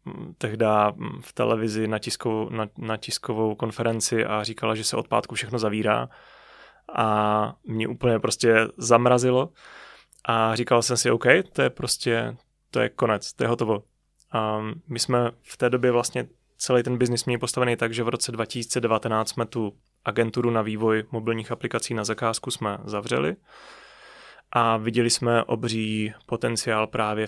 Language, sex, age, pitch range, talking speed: Czech, male, 20-39, 110-120 Hz, 155 wpm